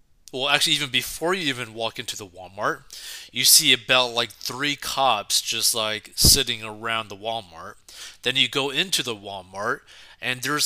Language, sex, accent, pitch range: English, male, American, 120-155 Hz